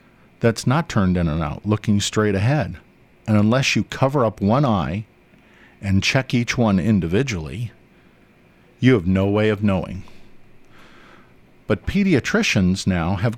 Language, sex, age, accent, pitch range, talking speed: English, male, 50-69, American, 90-115 Hz, 140 wpm